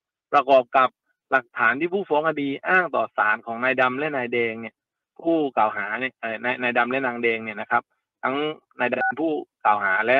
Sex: male